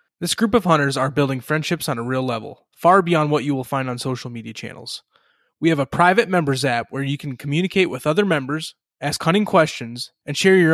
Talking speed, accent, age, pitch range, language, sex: 225 wpm, American, 20-39, 130-170 Hz, English, male